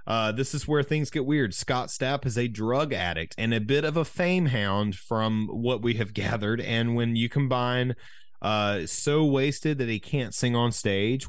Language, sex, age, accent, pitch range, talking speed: English, male, 30-49, American, 90-125 Hz, 200 wpm